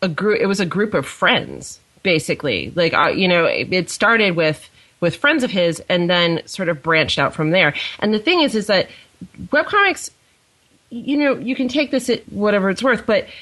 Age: 30-49